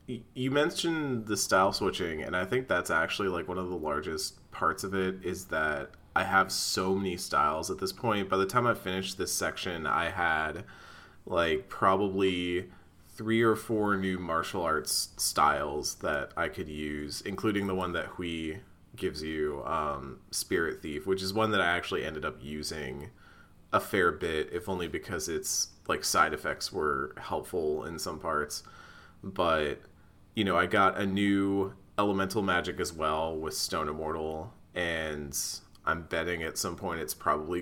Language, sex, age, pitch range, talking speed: English, male, 30-49, 80-110 Hz, 170 wpm